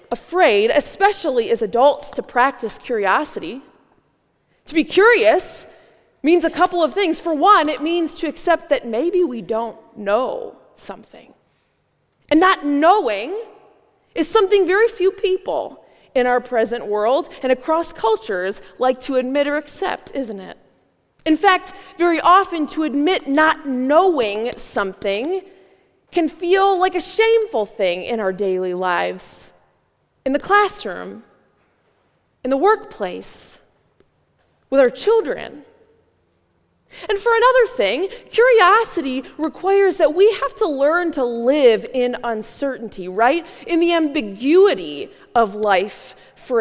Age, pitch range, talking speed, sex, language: 20-39, 250-385 Hz, 125 wpm, female, English